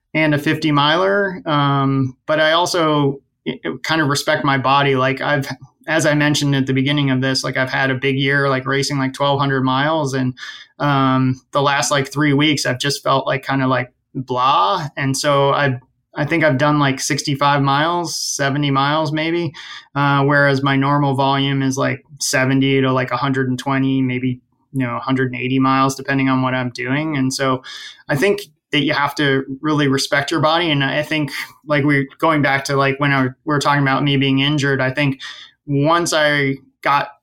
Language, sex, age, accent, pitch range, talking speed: English, male, 20-39, American, 135-145 Hz, 190 wpm